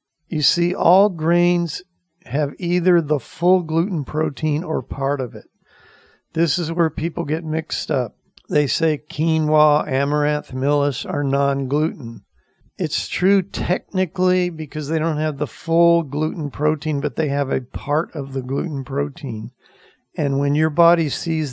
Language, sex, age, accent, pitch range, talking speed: English, male, 50-69, American, 135-160 Hz, 150 wpm